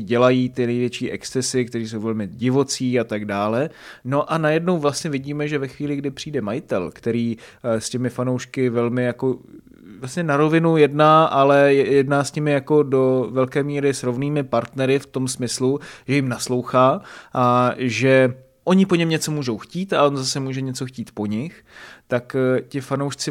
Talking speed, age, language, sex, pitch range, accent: 175 wpm, 30-49, Czech, male, 120-145 Hz, native